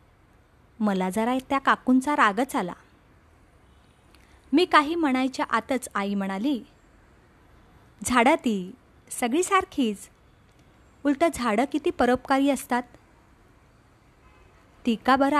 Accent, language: Indian, English